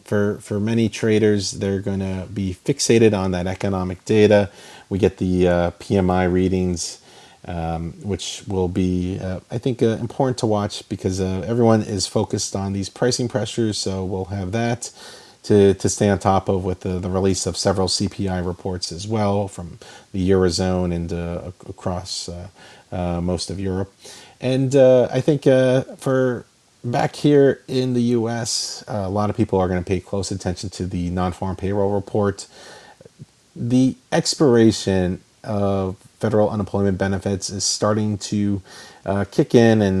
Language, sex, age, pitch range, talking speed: English, male, 40-59, 95-110 Hz, 165 wpm